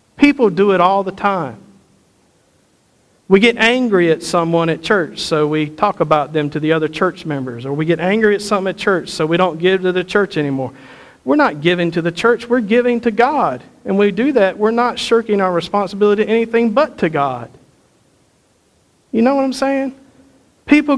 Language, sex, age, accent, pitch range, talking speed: English, male, 50-69, American, 175-235 Hz, 200 wpm